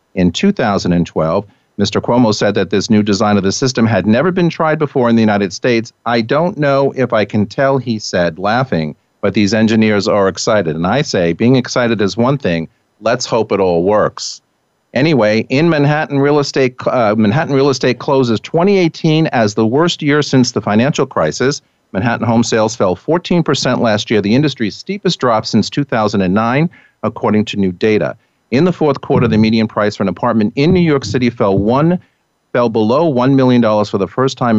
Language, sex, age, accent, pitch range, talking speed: English, male, 50-69, American, 105-145 Hz, 190 wpm